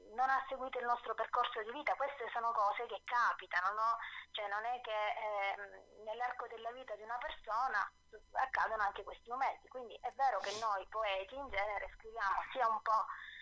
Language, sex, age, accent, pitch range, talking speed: Italian, female, 20-39, native, 200-265 Hz, 185 wpm